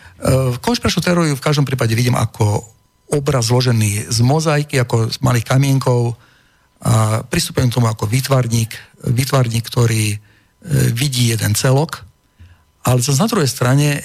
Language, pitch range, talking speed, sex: Slovak, 115-145 Hz, 130 wpm, male